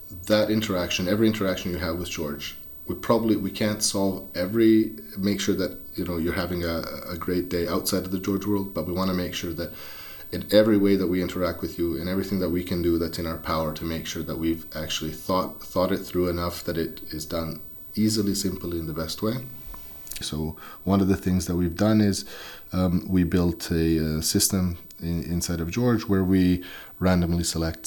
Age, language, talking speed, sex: 30-49, English, 215 wpm, male